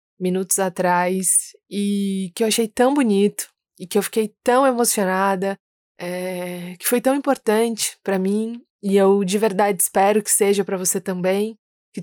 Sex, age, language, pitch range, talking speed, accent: female, 20-39, Portuguese, 180-205 Hz, 155 wpm, Brazilian